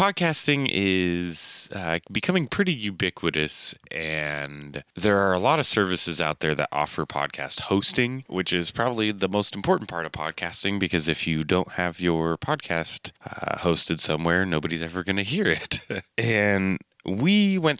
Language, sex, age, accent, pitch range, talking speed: English, male, 20-39, American, 80-110 Hz, 160 wpm